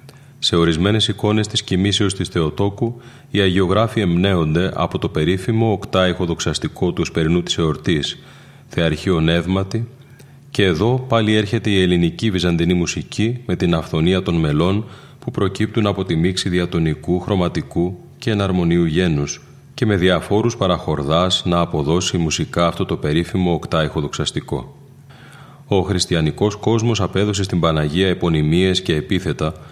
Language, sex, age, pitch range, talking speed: Greek, male, 30-49, 85-105 Hz, 130 wpm